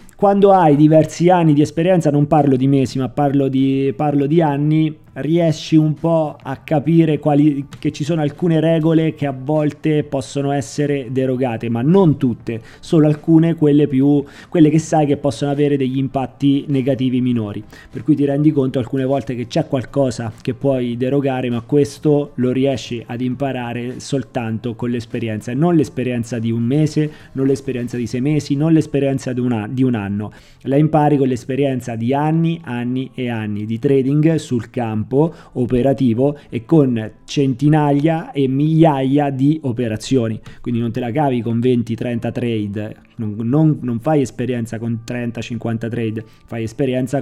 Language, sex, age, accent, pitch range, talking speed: Italian, male, 30-49, native, 120-150 Hz, 165 wpm